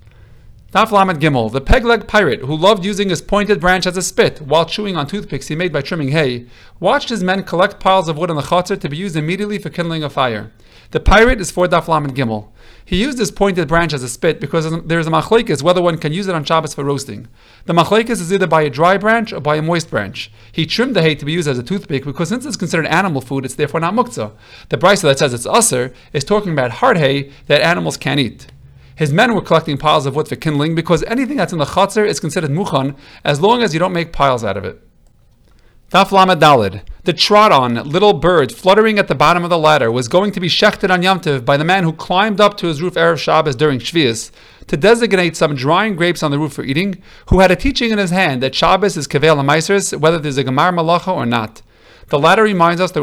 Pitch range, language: 145-190 Hz, English